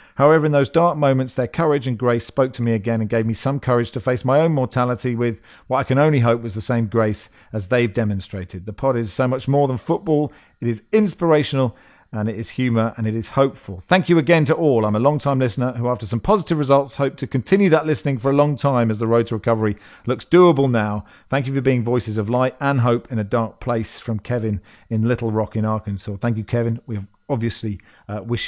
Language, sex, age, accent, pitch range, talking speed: English, male, 40-59, British, 110-140 Hz, 240 wpm